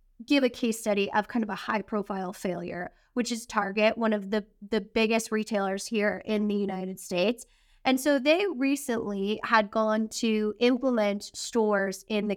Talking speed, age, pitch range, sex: 175 wpm, 20-39, 205-245 Hz, female